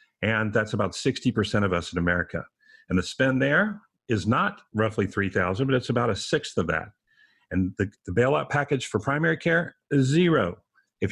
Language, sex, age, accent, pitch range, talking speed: English, male, 40-59, American, 95-125 Hz, 185 wpm